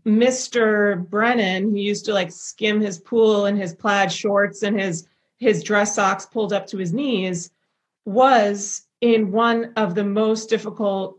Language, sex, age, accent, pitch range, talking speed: English, female, 30-49, American, 195-225 Hz, 160 wpm